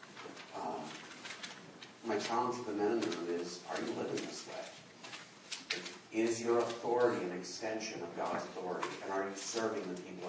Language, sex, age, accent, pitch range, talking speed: English, male, 40-59, American, 95-115 Hz, 170 wpm